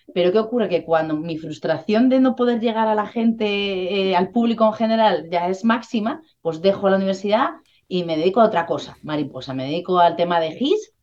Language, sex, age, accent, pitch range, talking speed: Spanish, female, 30-49, Spanish, 170-235 Hz, 210 wpm